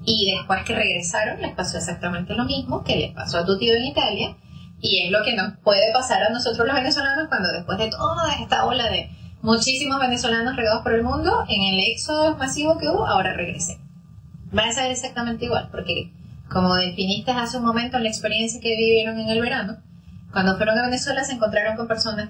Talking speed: 205 wpm